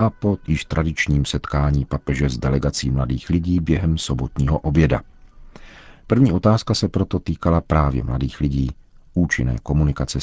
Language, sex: Czech, male